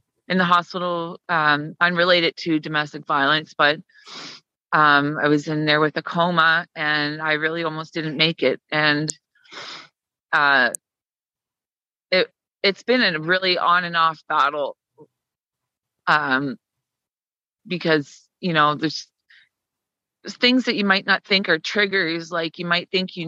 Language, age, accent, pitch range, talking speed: English, 30-49, American, 155-185 Hz, 140 wpm